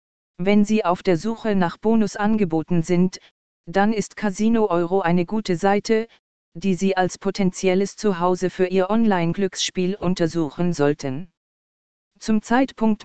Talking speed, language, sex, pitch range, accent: 125 wpm, German, female, 175-205 Hz, German